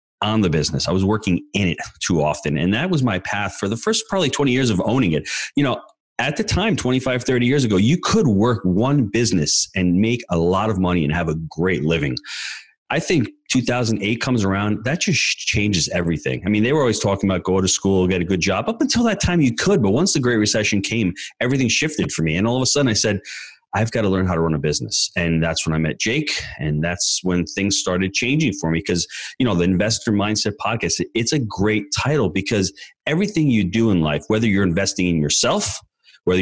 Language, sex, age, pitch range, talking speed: English, male, 30-49, 90-125 Hz, 230 wpm